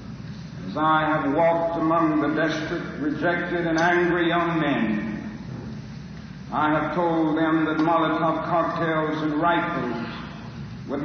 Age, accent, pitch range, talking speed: 60-79, American, 155-170 Hz, 115 wpm